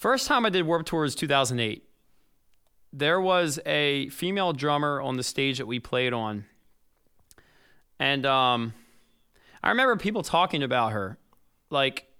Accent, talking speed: American, 150 wpm